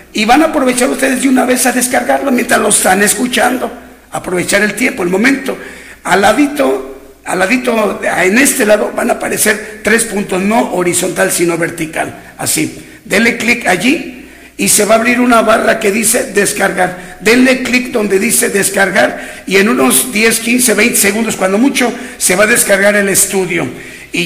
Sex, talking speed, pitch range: male, 175 wpm, 190-235 Hz